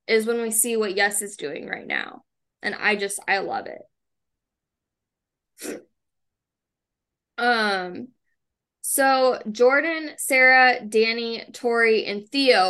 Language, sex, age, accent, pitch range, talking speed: English, female, 10-29, American, 210-255 Hz, 115 wpm